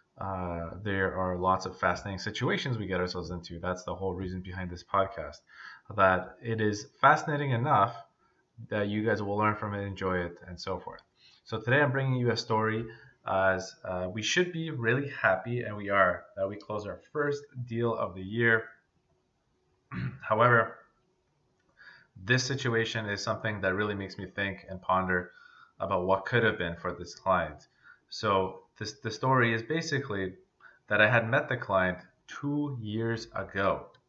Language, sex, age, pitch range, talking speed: English, male, 20-39, 95-125 Hz, 165 wpm